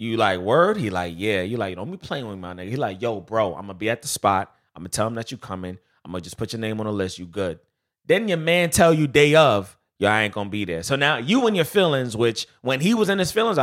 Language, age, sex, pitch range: English, 30-49, male, 100-155 Hz